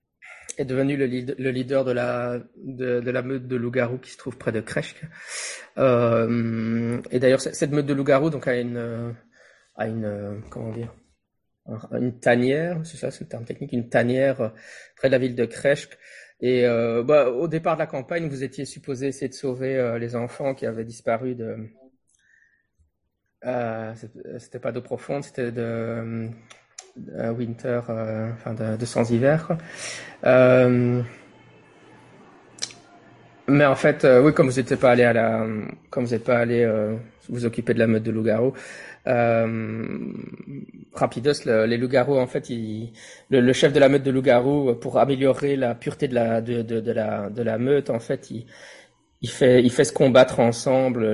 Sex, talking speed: male, 175 wpm